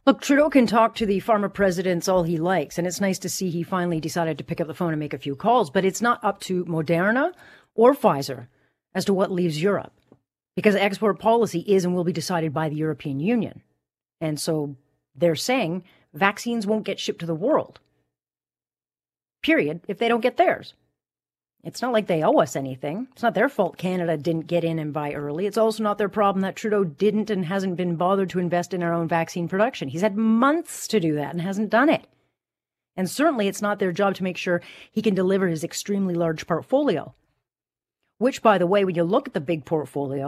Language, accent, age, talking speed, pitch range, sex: English, American, 40-59, 215 wpm, 165-215 Hz, female